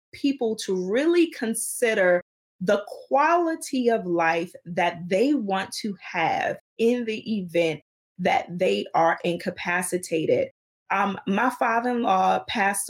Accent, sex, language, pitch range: American, female, English, 190-265 Hz